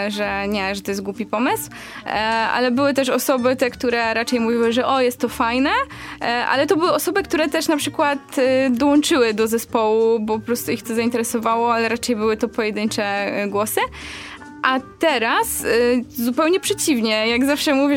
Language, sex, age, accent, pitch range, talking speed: Polish, female, 20-39, native, 215-260 Hz, 165 wpm